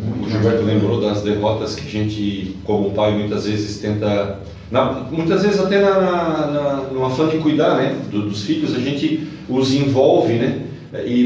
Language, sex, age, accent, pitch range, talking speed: Portuguese, male, 40-59, Brazilian, 110-160 Hz, 165 wpm